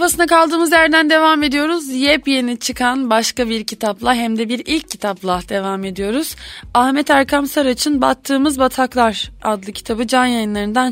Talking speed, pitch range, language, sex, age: 145 wpm, 205-260 Hz, Turkish, female, 20-39